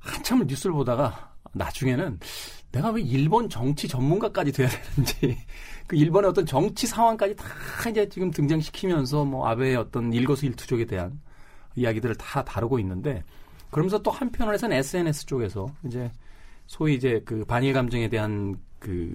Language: Korean